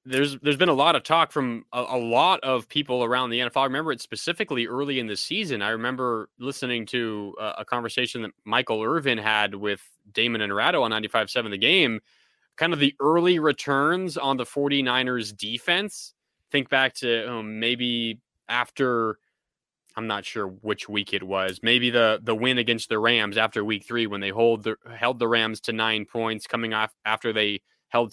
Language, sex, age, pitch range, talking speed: English, male, 20-39, 115-145 Hz, 195 wpm